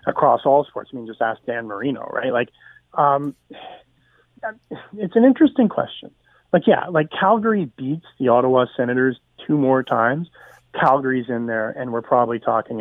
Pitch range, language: 130-165 Hz, English